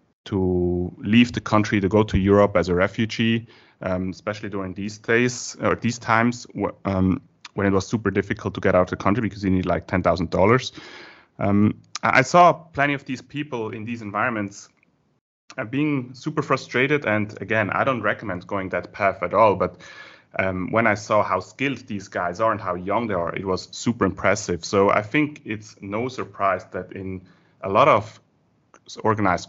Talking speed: 185 wpm